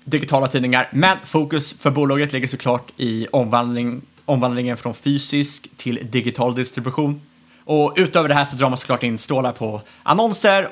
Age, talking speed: 20-39, 155 wpm